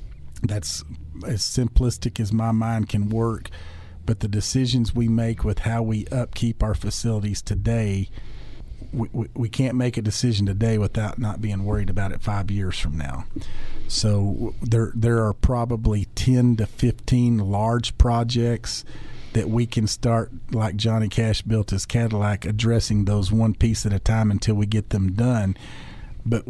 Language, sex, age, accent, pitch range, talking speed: English, male, 50-69, American, 105-115 Hz, 160 wpm